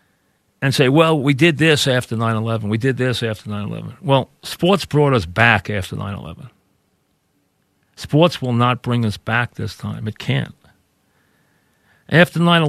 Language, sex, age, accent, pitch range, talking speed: English, male, 40-59, American, 115-145 Hz, 145 wpm